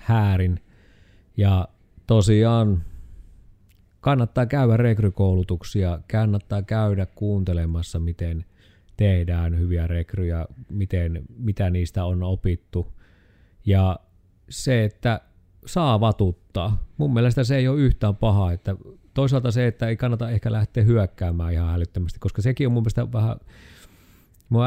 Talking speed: 115 wpm